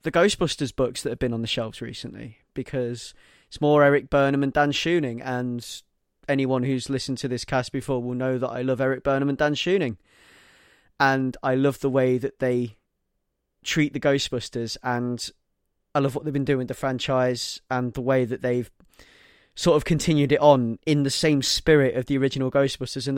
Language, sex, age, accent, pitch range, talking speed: English, male, 20-39, British, 125-145 Hz, 195 wpm